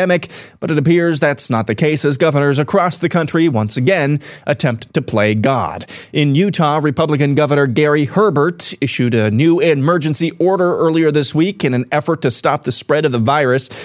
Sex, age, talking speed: male, 30-49, 180 wpm